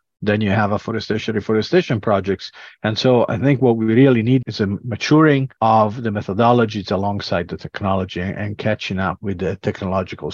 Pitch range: 95-115 Hz